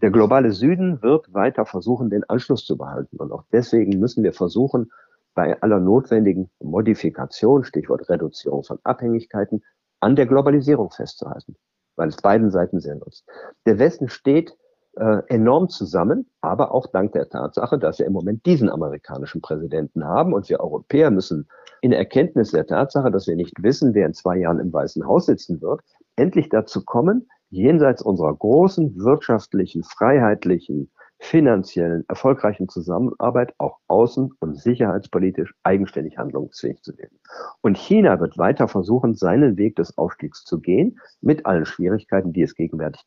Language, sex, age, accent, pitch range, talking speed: German, male, 50-69, German, 95-130 Hz, 155 wpm